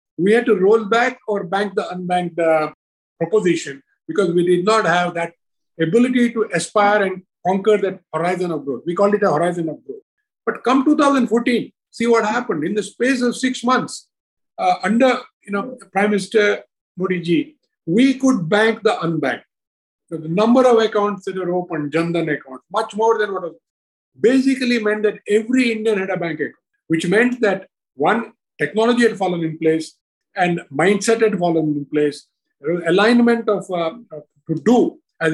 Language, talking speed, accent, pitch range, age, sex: English, 175 wpm, Indian, 170-225 Hz, 50-69, male